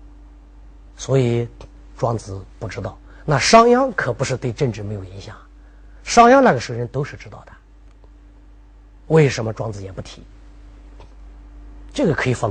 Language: Chinese